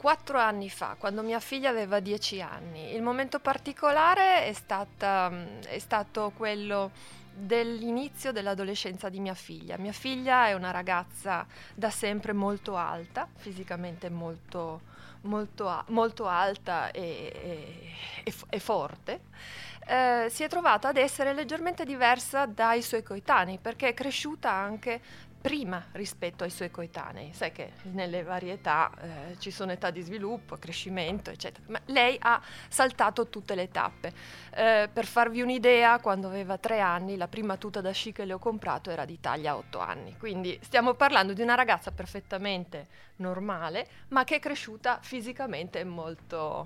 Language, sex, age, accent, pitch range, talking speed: Italian, female, 20-39, native, 195-260 Hz, 145 wpm